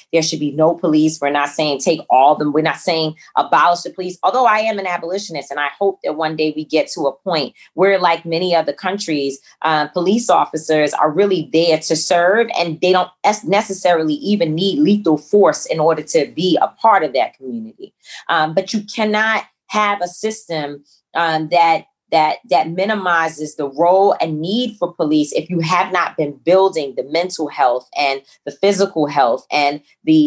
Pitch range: 155-195 Hz